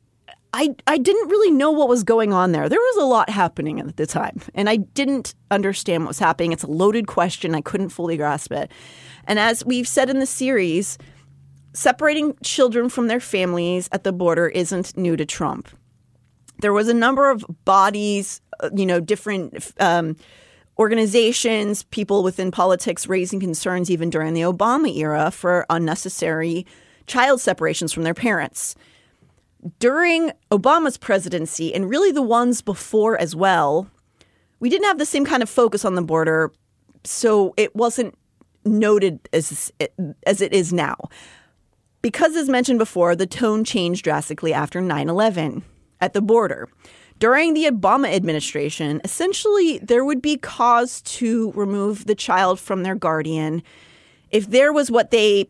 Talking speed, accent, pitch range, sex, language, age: 160 wpm, American, 170-235 Hz, female, English, 30-49